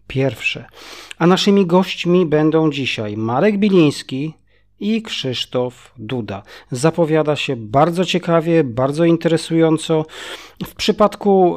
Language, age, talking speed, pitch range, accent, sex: Polish, 40-59, 100 wpm, 130-165 Hz, native, male